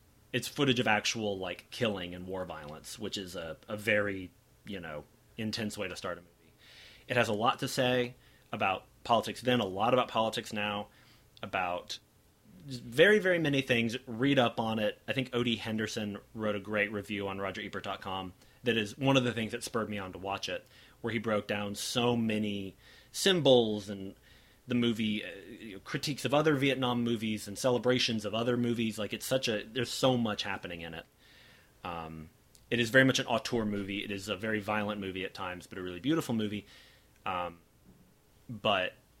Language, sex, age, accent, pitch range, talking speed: English, male, 30-49, American, 100-125 Hz, 185 wpm